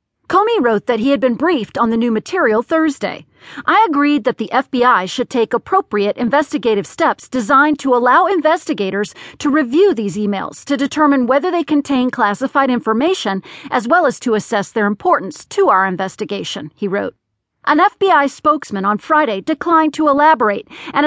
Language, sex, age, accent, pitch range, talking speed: English, female, 40-59, American, 220-310 Hz, 165 wpm